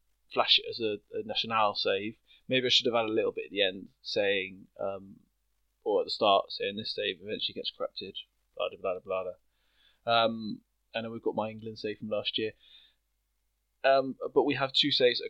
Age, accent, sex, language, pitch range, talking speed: 20-39, British, male, English, 110-140 Hz, 200 wpm